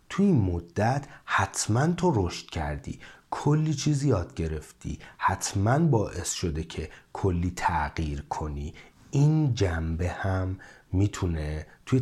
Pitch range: 90-150 Hz